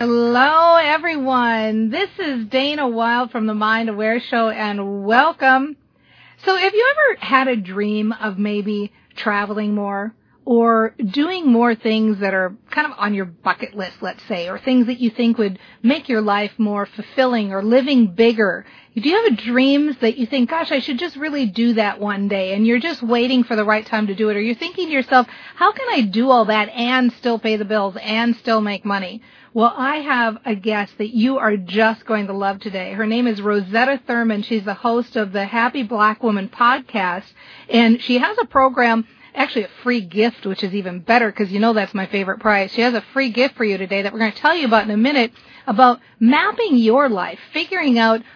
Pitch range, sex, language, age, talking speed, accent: 210-255 Hz, female, English, 40-59, 210 wpm, American